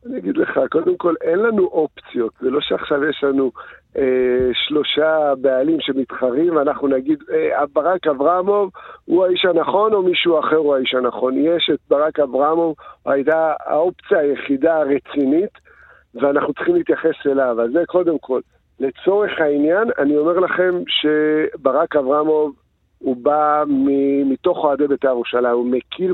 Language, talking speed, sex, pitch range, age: Hebrew, 145 wpm, male, 145-210 Hz, 50-69